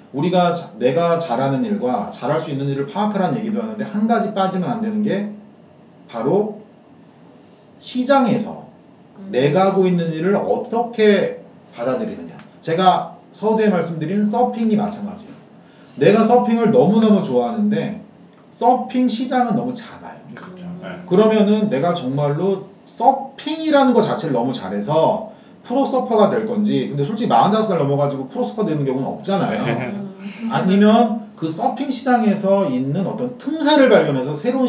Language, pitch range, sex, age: Korean, 185-235 Hz, male, 40-59